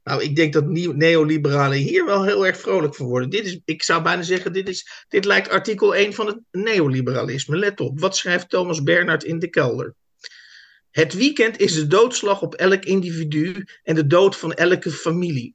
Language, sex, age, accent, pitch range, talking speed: Dutch, male, 50-69, Dutch, 160-200 Hz, 195 wpm